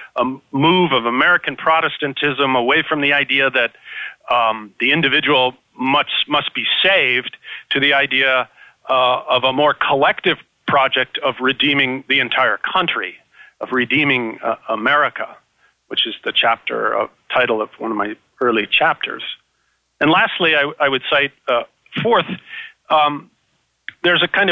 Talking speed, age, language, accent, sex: 145 wpm, 40-59, English, American, male